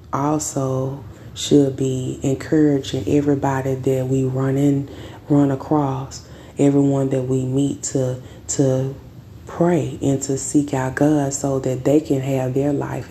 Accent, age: American, 20-39